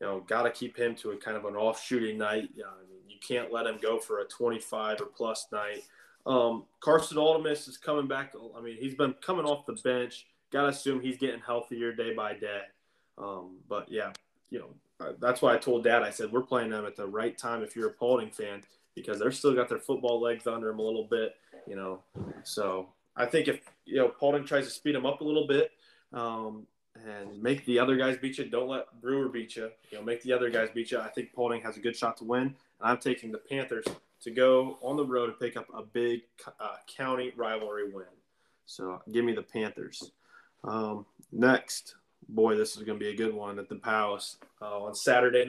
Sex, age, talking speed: male, 20-39, 230 wpm